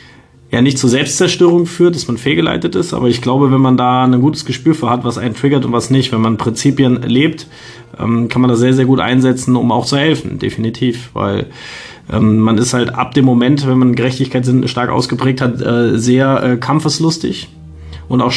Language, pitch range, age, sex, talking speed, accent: German, 115-130 Hz, 30-49, male, 205 wpm, German